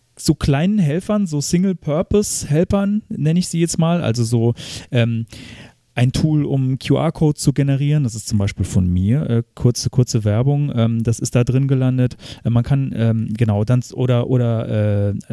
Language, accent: German, German